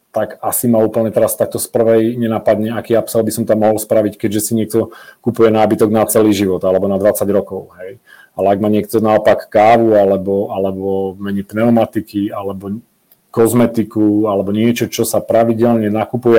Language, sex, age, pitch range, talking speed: Czech, male, 40-59, 105-115 Hz, 170 wpm